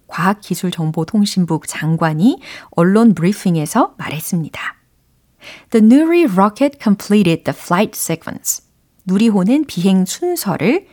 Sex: female